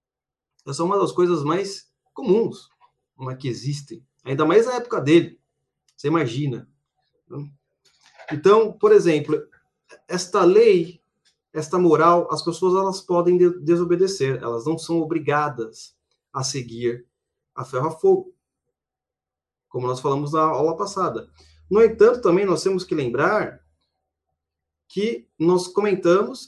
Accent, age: Brazilian, 30-49